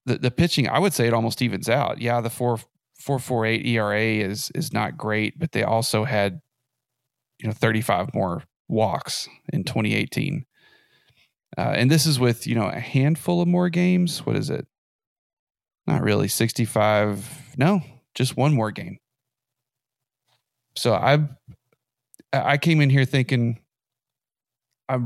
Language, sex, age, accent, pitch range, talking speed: English, male, 30-49, American, 115-135 Hz, 165 wpm